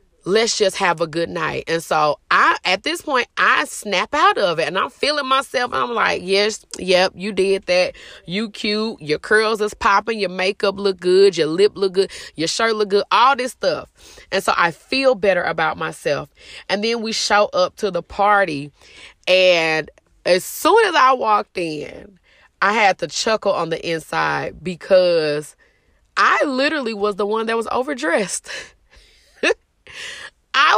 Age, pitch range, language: 20-39, 175-245 Hz, English